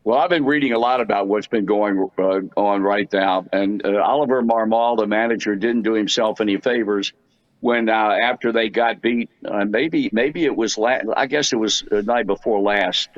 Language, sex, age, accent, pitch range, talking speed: English, male, 60-79, American, 100-115 Hz, 205 wpm